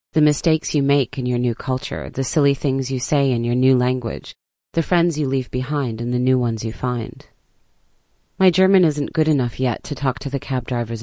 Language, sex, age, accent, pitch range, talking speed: English, female, 30-49, American, 120-155 Hz, 220 wpm